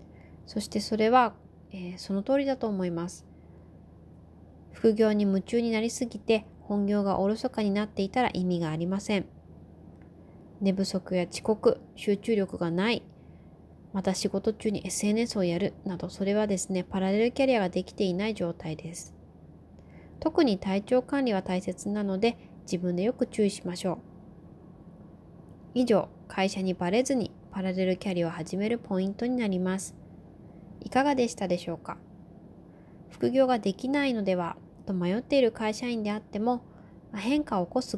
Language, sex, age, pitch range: Japanese, female, 20-39, 180-220 Hz